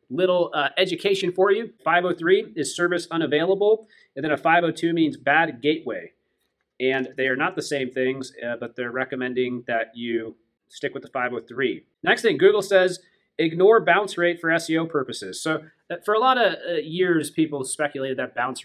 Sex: male